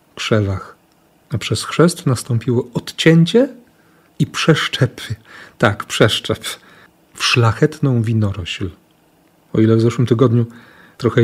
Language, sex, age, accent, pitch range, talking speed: Polish, male, 40-59, native, 115-150 Hz, 100 wpm